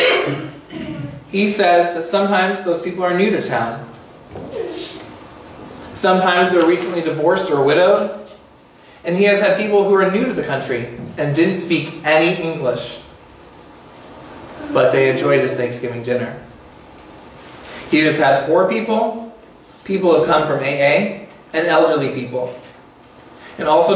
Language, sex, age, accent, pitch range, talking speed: English, male, 30-49, American, 130-190 Hz, 140 wpm